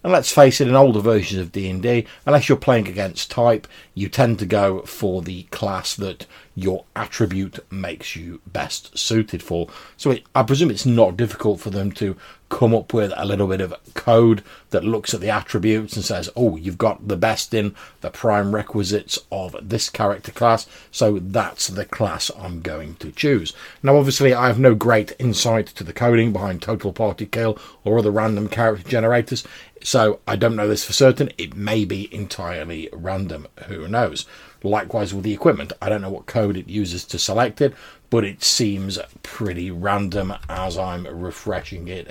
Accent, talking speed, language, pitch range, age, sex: British, 185 wpm, English, 95-115 Hz, 40-59, male